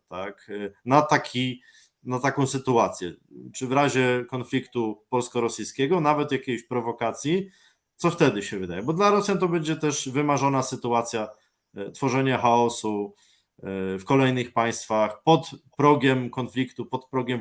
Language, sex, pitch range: Polish, male, 115-145 Hz